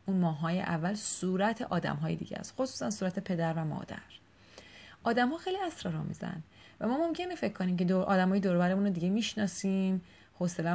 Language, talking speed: Persian, 180 wpm